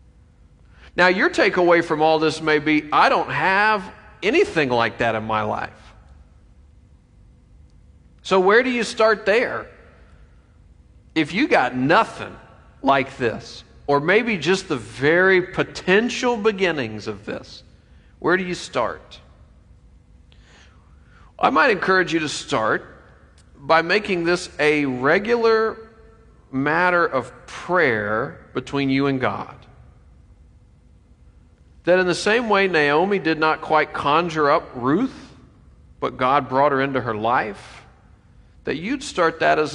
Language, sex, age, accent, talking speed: English, male, 40-59, American, 125 wpm